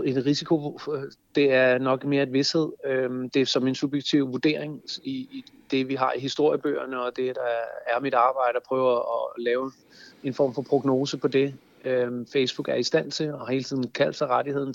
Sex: male